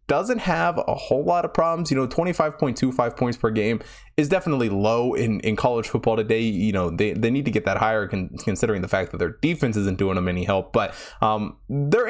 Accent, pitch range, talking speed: American, 110-145 Hz, 220 wpm